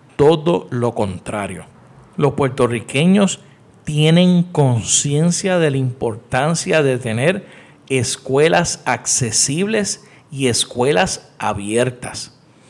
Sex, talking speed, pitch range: male, 80 wpm, 130-170 Hz